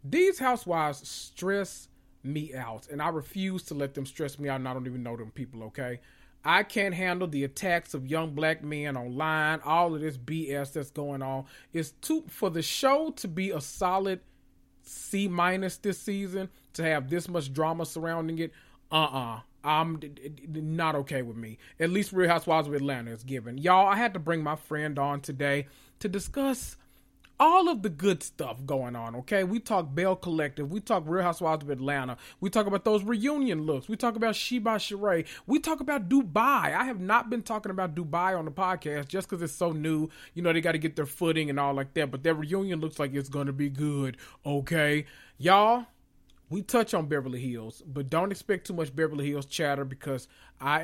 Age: 30-49